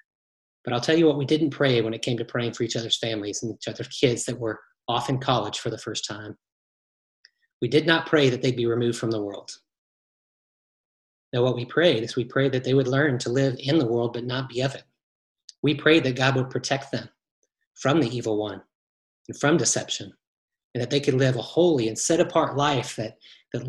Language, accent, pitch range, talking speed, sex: English, American, 120-145 Hz, 225 wpm, male